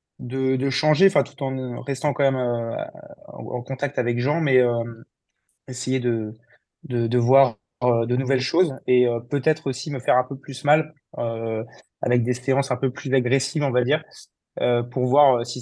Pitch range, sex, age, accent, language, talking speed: 120-135 Hz, male, 20-39, French, French, 200 wpm